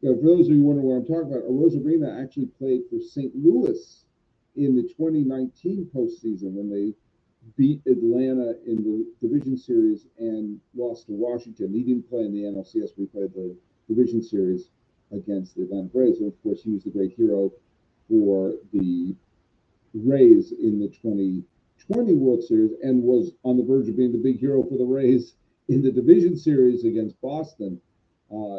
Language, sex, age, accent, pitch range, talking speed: English, male, 50-69, American, 115-150 Hz, 180 wpm